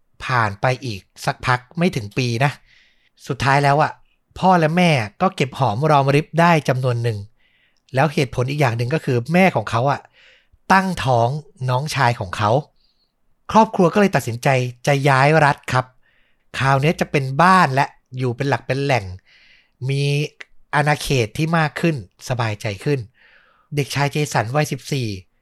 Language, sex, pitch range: Thai, male, 125-165 Hz